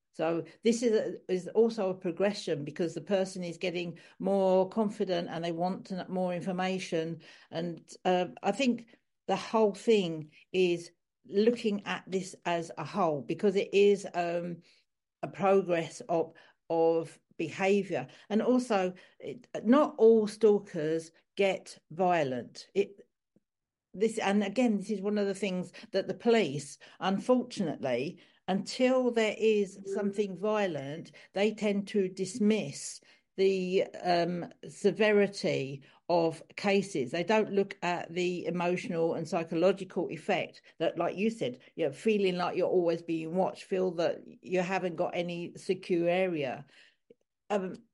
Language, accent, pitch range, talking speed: English, British, 170-205 Hz, 135 wpm